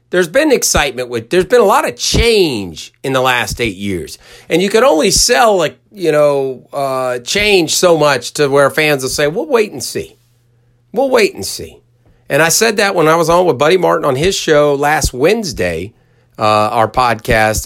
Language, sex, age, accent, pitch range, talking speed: English, male, 40-59, American, 115-145 Hz, 200 wpm